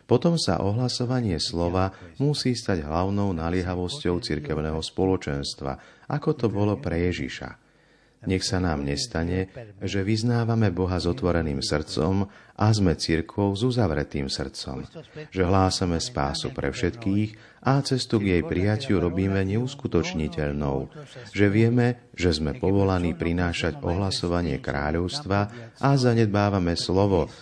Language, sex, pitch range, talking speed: Slovak, male, 80-110 Hz, 120 wpm